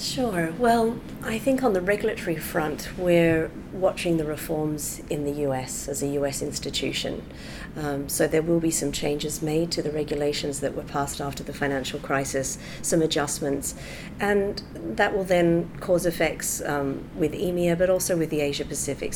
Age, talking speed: 40-59, 170 wpm